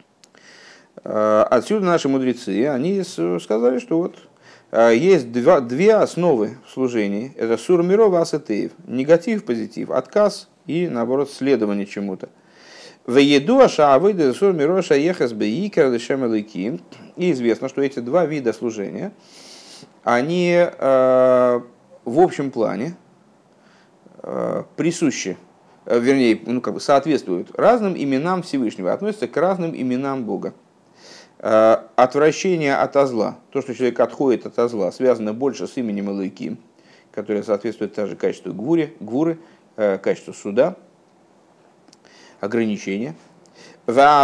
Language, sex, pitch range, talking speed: Russian, male, 115-180 Hz, 105 wpm